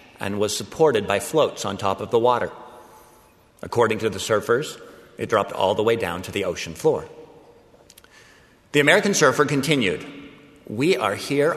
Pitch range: 110-145 Hz